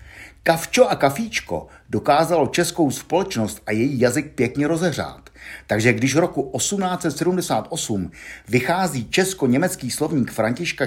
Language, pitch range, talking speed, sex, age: Czech, 105-170 Hz, 110 wpm, male, 50-69